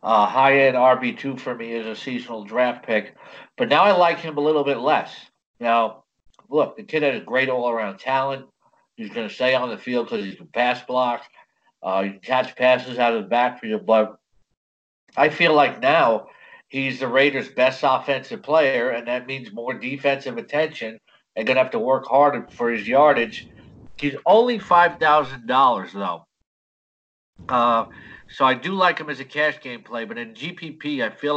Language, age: English, 60-79